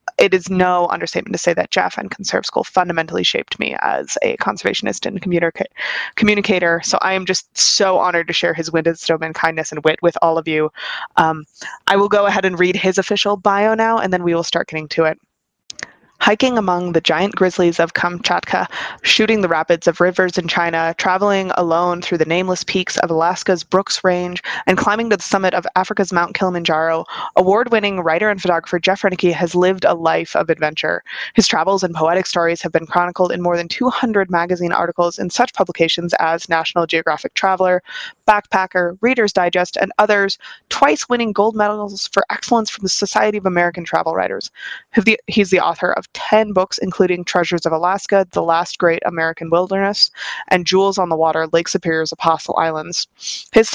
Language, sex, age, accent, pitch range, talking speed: English, female, 20-39, American, 170-200 Hz, 185 wpm